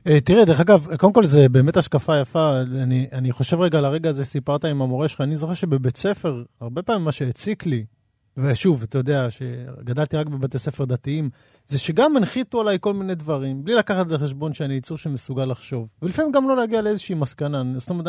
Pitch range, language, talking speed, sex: 130-160 Hz, Hebrew, 205 wpm, male